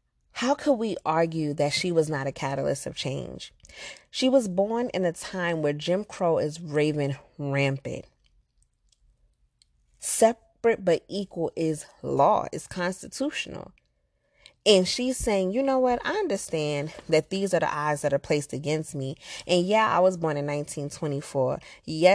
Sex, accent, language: female, American, English